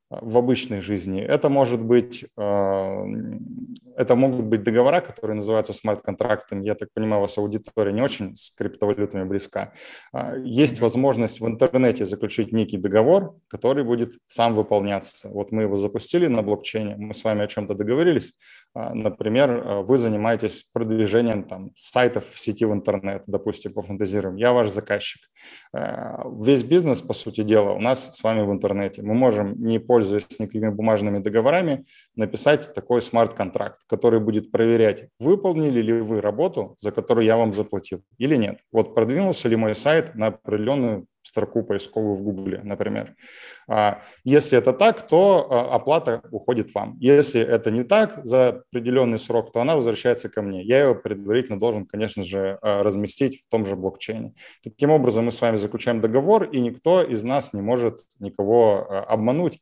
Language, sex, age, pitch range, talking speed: Russian, male, 20-39, 105-125 Hz, 155 wpm